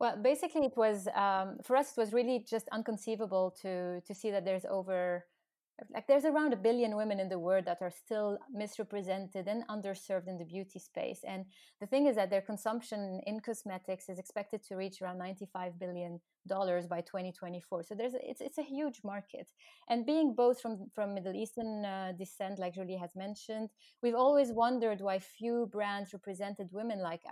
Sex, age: female, 30-49